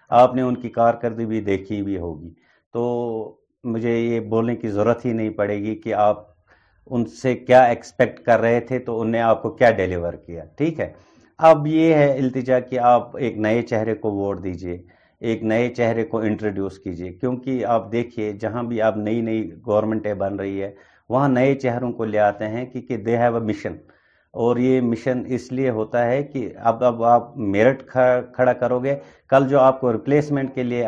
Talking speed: 200 wpm